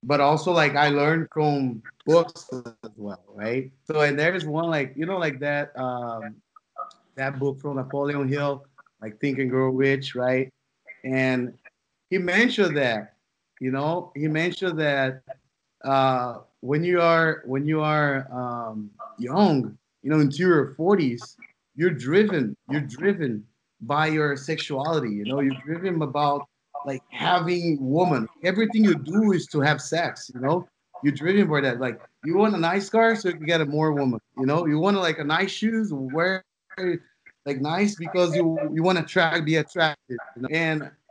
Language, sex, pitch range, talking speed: English, male, 135-180 Hz, 170 wpm